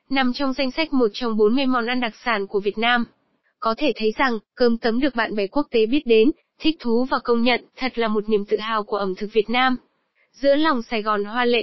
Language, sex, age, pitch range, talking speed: Vietnamese, female, 20-39, 220-275 Hz, 255 wpm